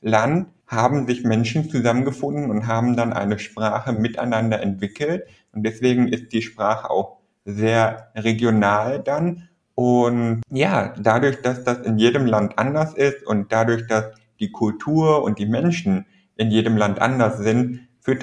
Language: German